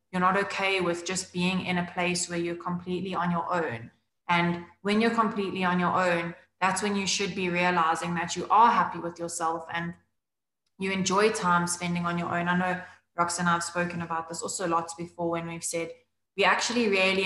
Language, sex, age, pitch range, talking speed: English, female, 20-39, 170-190 Hz, 205 wpm